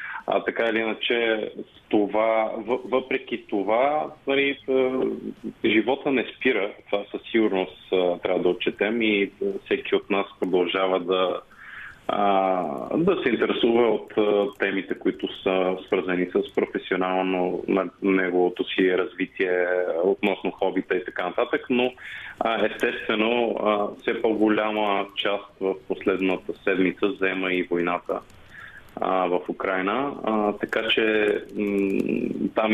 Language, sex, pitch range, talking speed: Bulgarian, male, 95-105 Hz, 110 wpm